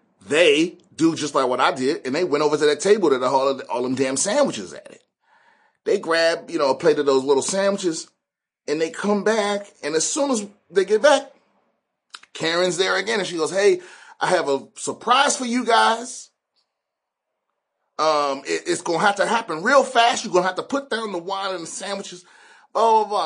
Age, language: 30-49, English